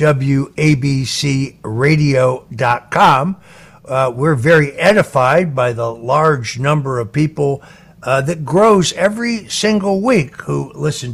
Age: 60-79